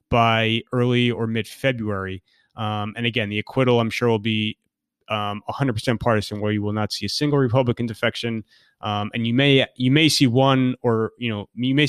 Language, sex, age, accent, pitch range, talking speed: English, male, 20-39, American, 110-130 Hz, 190 wpm